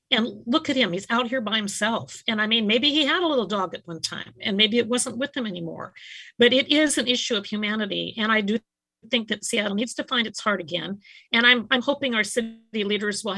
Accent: American